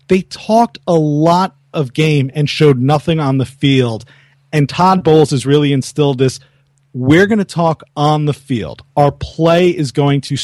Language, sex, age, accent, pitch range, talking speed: English, male, 40-59, American, 135-155 Hz, 180 wpm